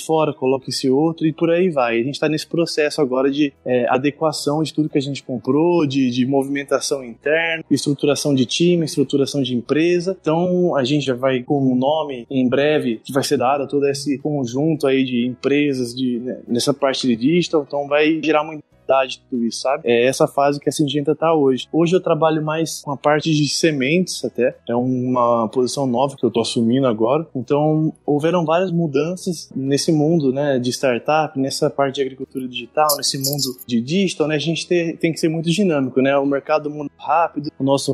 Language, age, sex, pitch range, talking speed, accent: Portuguese, 20-39, male, 130-155 Hz, 205 wpm, Brazilian